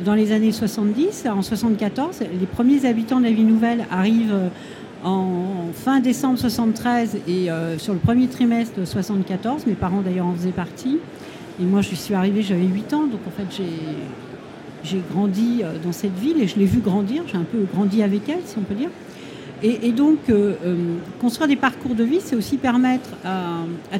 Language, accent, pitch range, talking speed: French, French, 200-255 Hz, 200 wpm